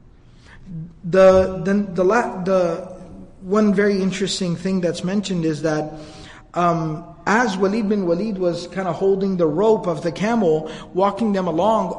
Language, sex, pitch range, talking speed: Malay, male, 165-200 Hz, 145 wpm